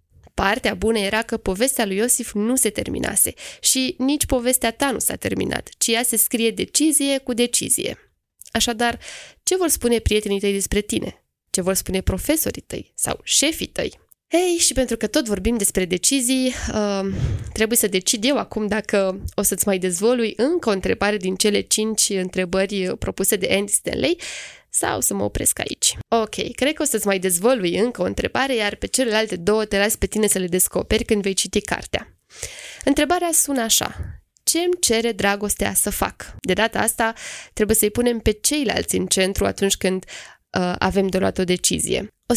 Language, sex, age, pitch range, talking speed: Romanian, female, 20-39, 195-250 Hz, 180 wpm